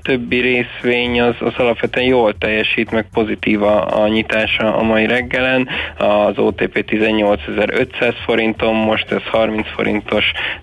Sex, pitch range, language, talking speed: male, 105-115 Hz, Hungarian, 130 wpm